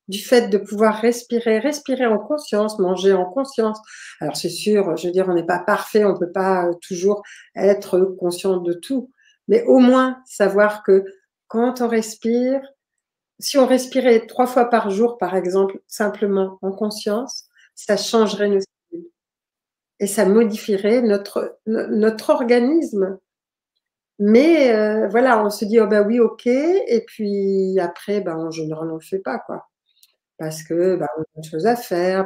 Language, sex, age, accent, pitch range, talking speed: French, female, 50-69, French, 195-240 Hz, 165 wpm